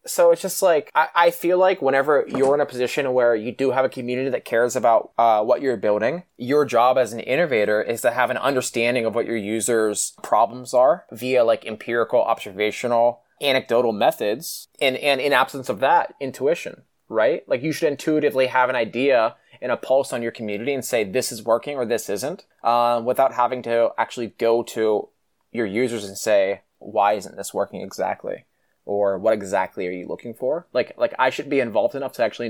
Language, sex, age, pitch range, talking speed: English, male, 20-39, 115-140 Hz, 200 wpm